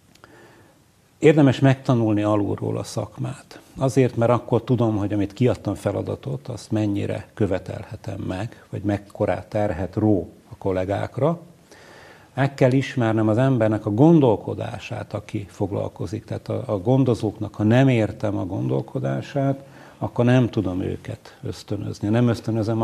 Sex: male